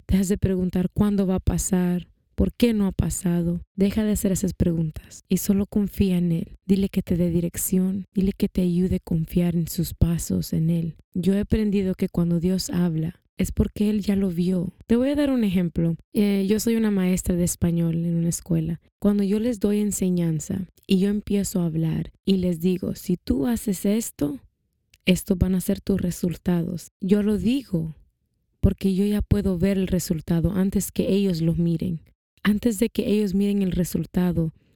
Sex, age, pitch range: female, 20-39, 170-205 Hz